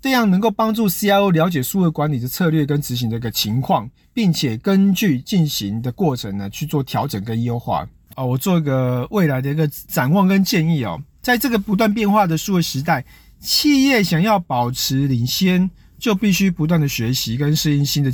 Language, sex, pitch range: Chinese, male, 125-190 Hz